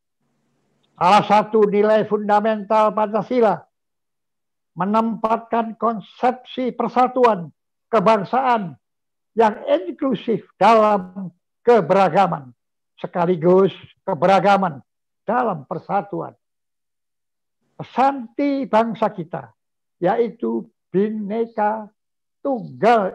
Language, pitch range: Indonesian, 185-230 Hz